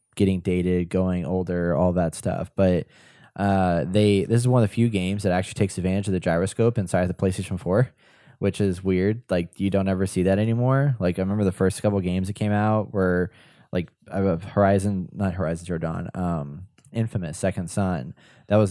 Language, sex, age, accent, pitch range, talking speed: English, male, 10-29, American, 95-110 Hz, 190 wpm